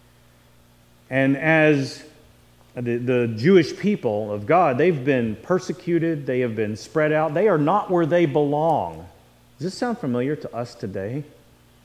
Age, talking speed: 40-59, 145 wpm